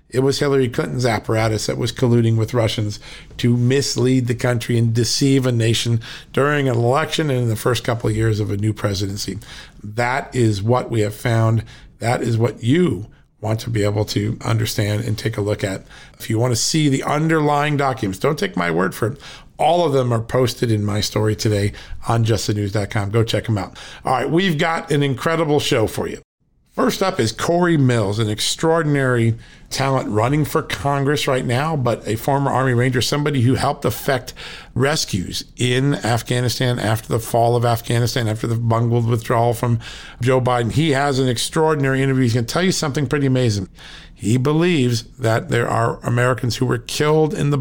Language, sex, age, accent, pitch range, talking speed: English, male, 50-69, American, 115-140 Hz, 190 wpm